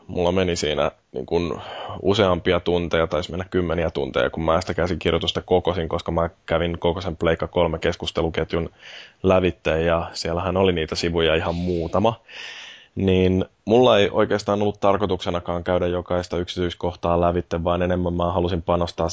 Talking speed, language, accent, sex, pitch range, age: 145 wpm, Finnish, native, male, 85-95 Hz, 20-39